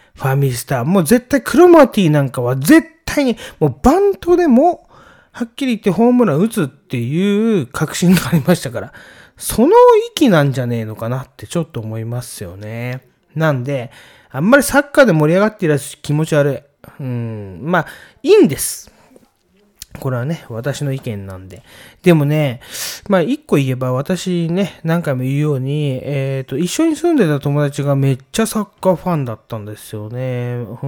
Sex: male